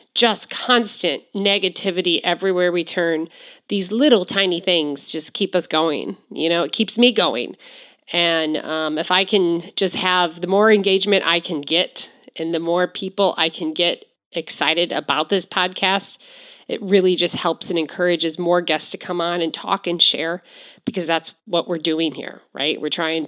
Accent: American